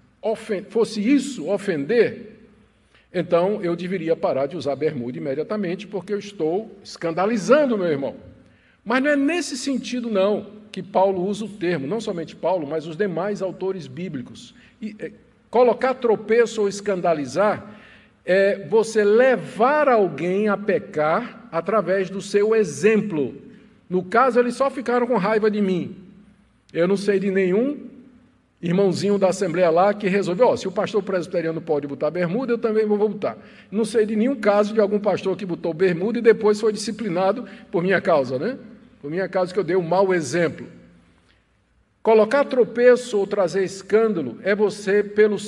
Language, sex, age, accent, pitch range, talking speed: Portuguese, male, 50-69, Brazilian, 185-235 Hz, 155 wpm